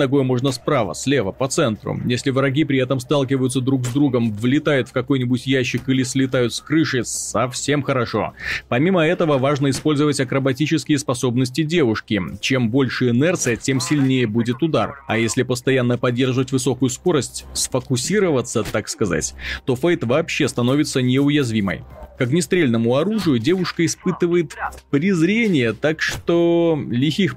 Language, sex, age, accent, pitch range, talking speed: Russian, male, 30-49, native, 125-160 Hz, 135 wpm